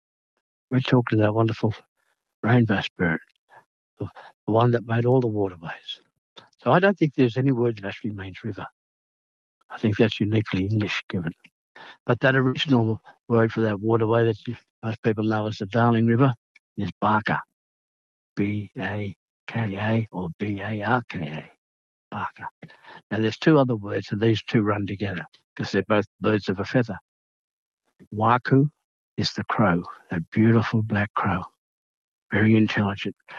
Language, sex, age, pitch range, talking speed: English, male, 60-79, 100-120 Hz, 140 wpm